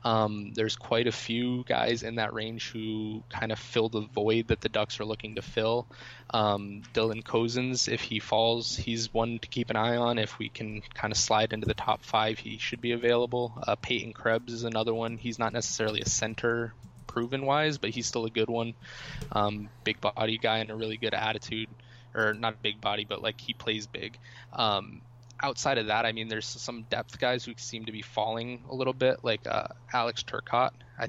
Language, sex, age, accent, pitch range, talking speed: English, male, 20-39, American, 110-120 Hz, 210 wpm